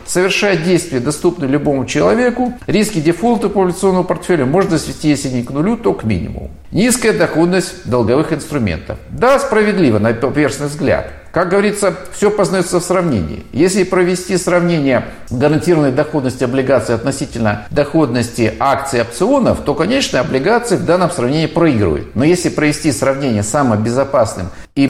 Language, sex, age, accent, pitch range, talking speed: Russian, male, 50-69, native, 115-175 Hz, 145 wpm